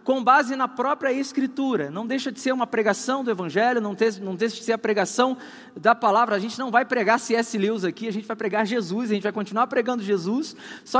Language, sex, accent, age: Portuguese, male, Brazilian, 20-39